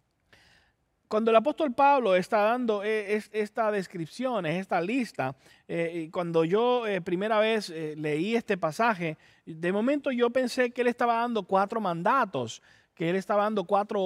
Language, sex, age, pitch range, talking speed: English, male, 30-49, 165-230 Hz, 155 wpm